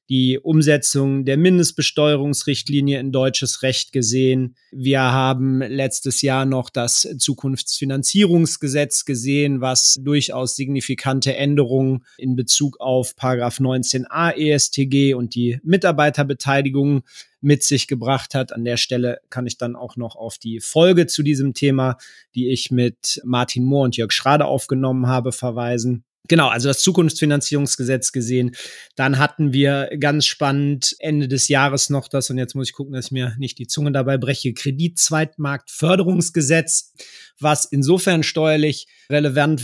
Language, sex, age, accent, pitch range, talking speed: German, male, 30-49, German, 130-150 Hz, 135 wpm